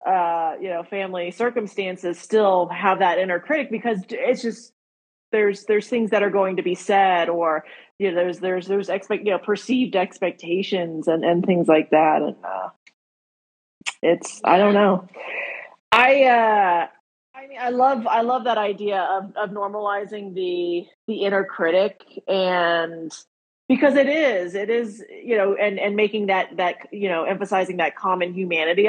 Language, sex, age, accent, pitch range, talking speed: English, female, 30-49, American, 175-215 Hz, 165 wpm